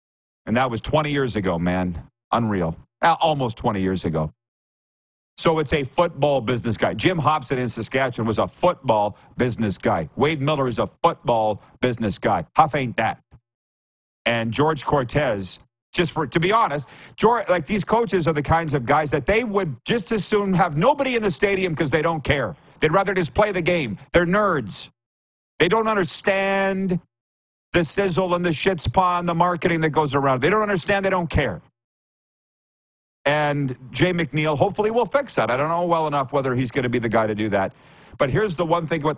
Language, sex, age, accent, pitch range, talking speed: English, male, 40-59, American, 120-175 Hz, 190 wpm